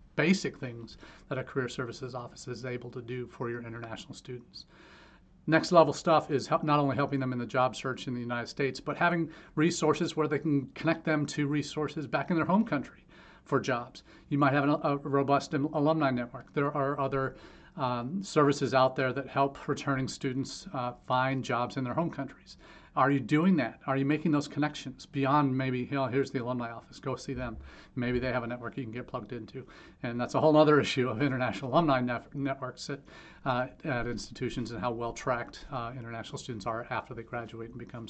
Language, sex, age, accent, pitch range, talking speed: English, male, 40-59, American, 120-145 Hz, 200 wpm